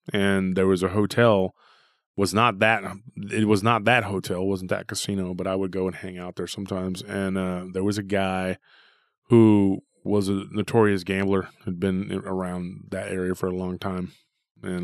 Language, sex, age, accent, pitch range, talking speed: English, male, 20-39, American, 95-105 Hz, 185 wpm